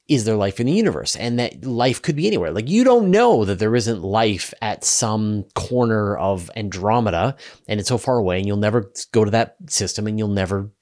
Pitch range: 105-160 Hz